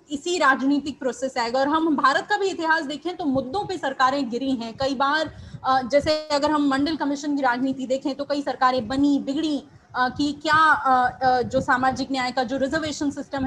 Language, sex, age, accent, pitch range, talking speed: Hindi, female, 20-39, native, 255-295 Hz, 185 wpm